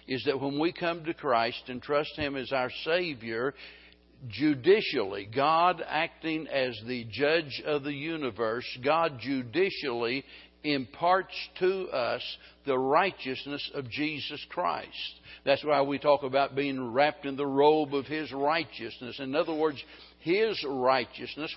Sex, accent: male, American